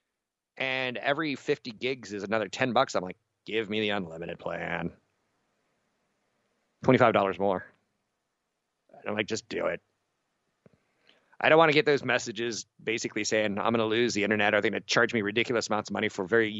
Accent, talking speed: American, 180 wpm